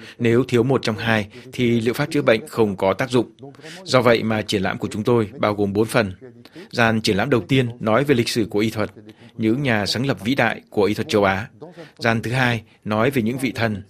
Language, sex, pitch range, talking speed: Vietnamese, male, 110-125 Hz, 245 wpm